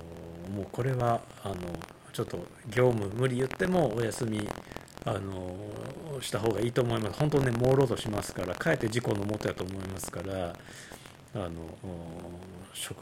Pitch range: 95-135 Hz